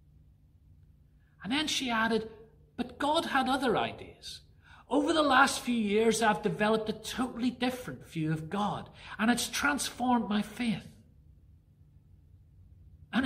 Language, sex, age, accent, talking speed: English, male, 40-59, British, 125 wpm